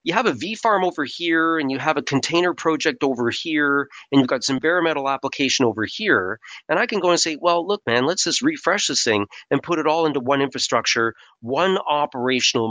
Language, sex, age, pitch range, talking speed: English, male, 40-59, 115-155 Hz, 220 wpm